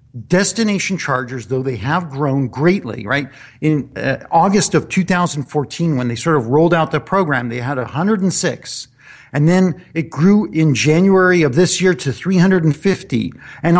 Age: 50-69